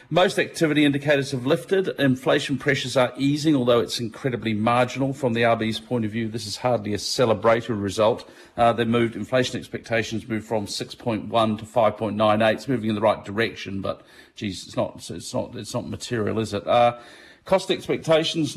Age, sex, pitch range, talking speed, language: 40-59, male, 110-130 Hz, 180 wpm, English